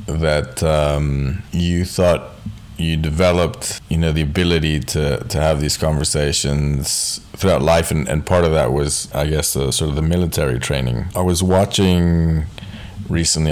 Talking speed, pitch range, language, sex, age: 155 wpm, 75-95 Hz, English, male, 20-39